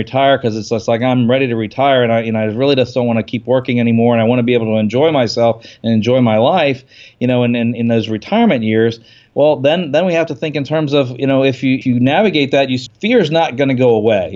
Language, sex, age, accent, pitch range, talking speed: English, male, 40-59, American, 115-135 Hz, 295 wpm